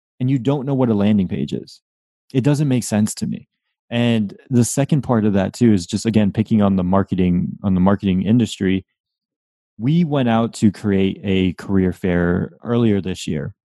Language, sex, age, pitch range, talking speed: English, male, 20-39, 100-120 Hz, 190 wpm